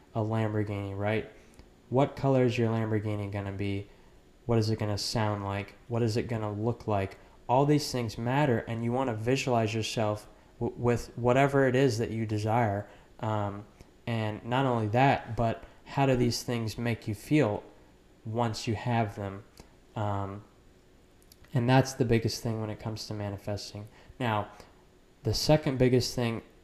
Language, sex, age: English, male, 20-39